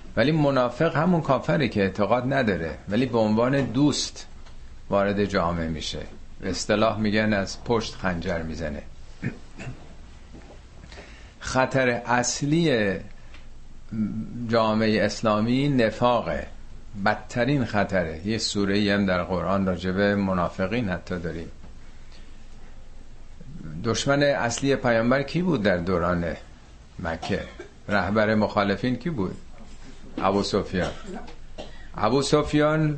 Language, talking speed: Persian, 95 wpm